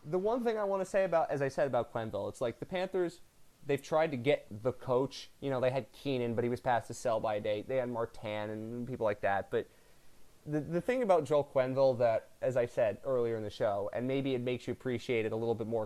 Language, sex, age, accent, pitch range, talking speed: English, male, 20-39, American, 120-155 Hz, 260 wpm